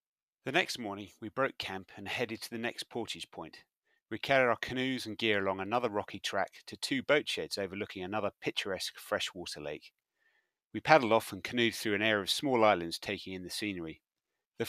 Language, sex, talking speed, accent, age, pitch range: English, male, 195 wpm, British, 30-49, 95-120 Hz